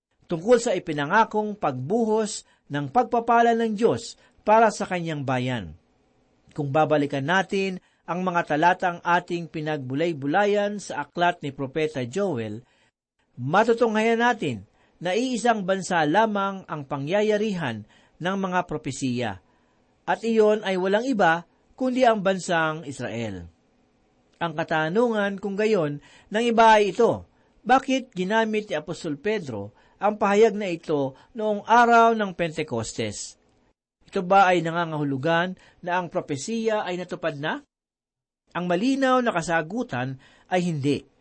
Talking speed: 120 wpm